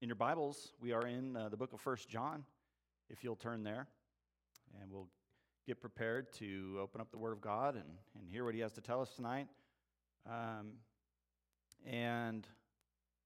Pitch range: 75-115 Hz